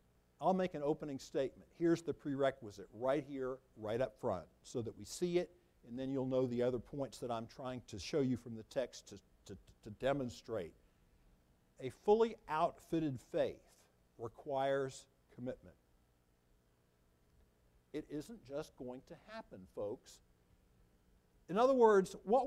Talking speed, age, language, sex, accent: 145 wpm, 60-79, English, male, American